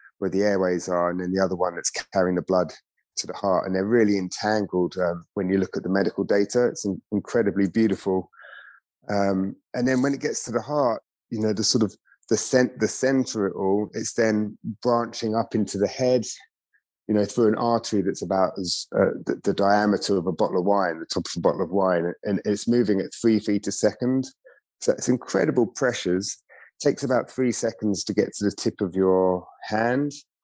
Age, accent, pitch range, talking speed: 30-49, British, 95-115 Hz, 215 wpm